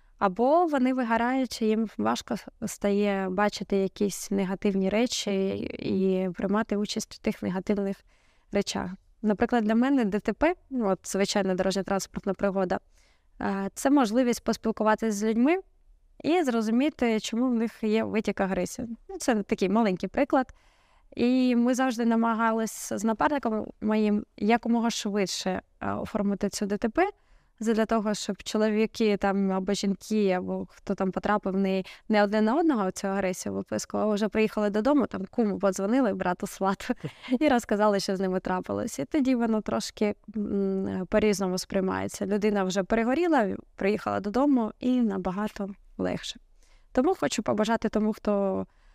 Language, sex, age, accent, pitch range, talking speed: Ukrainian, female, 20-39, native, 195-230 Hz, 135 wpm